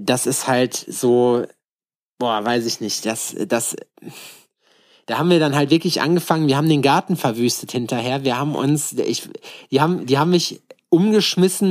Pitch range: 130-165 Hz